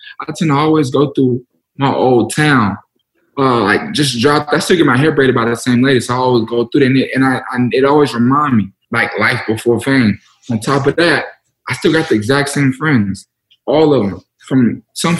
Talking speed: 220 wpm